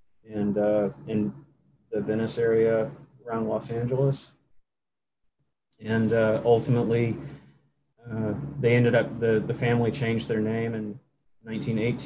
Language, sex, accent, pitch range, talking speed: English, male, American, 110-120 Hz, 120 wpm